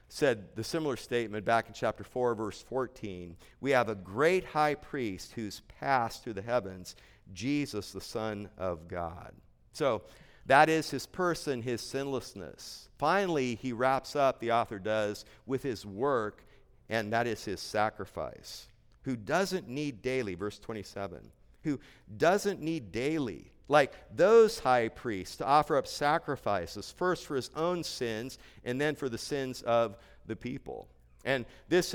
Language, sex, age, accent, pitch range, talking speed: English, male, 50-69, American, 110-155 Hz, 150 wpm